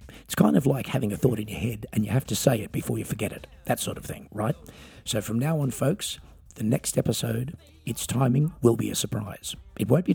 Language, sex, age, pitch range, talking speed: English, male, 50-69, 100-135 Hz, 250 wpm